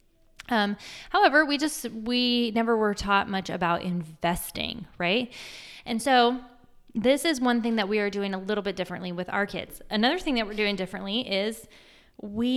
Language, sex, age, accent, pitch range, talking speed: English, female, 20-39, American, 185-235 Hz, 175 wpm